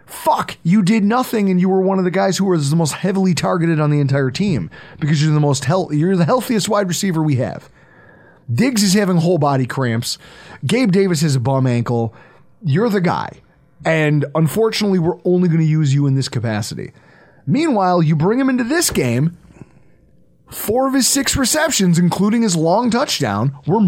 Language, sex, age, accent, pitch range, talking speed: English, male, 30-49, American, 145-215 Hz, 185 wpm